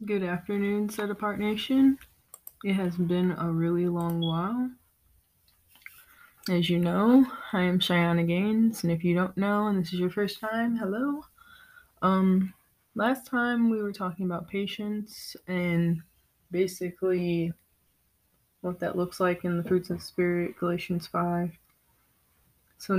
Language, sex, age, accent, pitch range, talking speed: English, female, 20-39, American, 170-200 Hz, 140 wpm